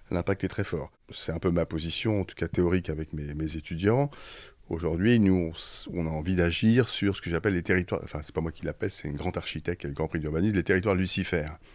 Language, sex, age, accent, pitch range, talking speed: French, male, 30-49, French, 80-100 Hz, 245 wpm